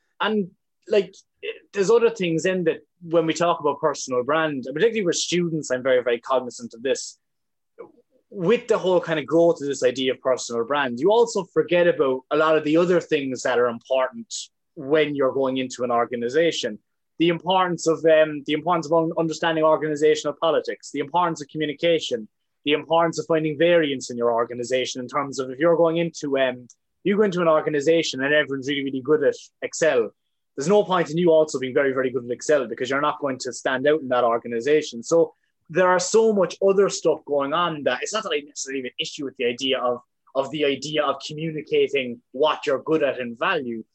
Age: 20-39